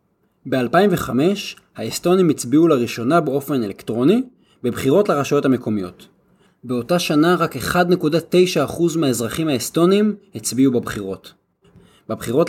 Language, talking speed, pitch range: Hebrew, 85 wpm, 130-185 Hz